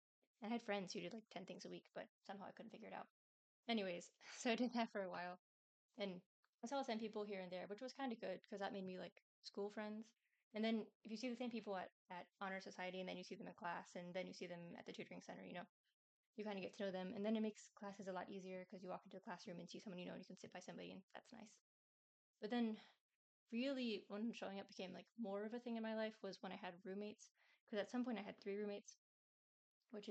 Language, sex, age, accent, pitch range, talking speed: English, female, 20-39, American, 190-225 Hz, 280 wpm